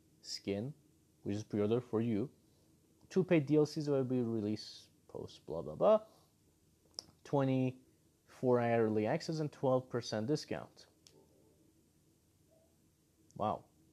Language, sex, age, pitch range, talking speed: English, male, 30-49, 105-145 Hz, 85 wpm